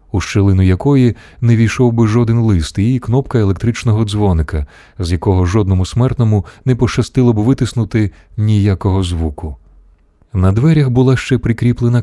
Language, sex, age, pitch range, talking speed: Ukrainian, male, 30-49, 90-125 Hz, 135 wpm